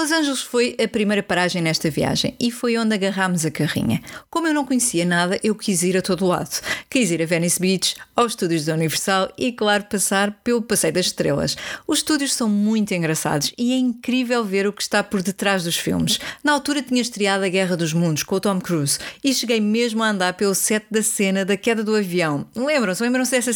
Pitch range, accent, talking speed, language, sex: 180-240 Hz, Brazilian, 215 wpm, English, female